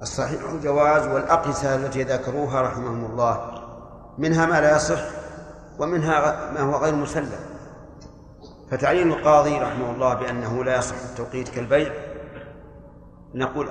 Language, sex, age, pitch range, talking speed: Arabic, male, 50-69, 130-150 Hz, 115 wpm